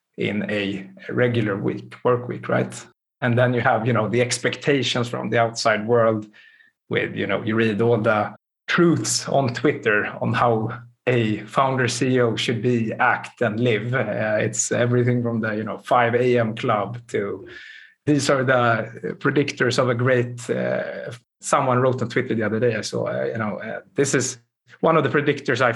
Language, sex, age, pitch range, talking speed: English, male, 30-49, 110-135 Hz, 180 wpm